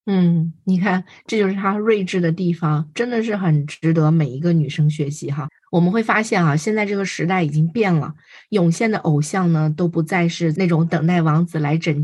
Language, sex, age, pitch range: Chinese, female, 20-39, 155-190 Hz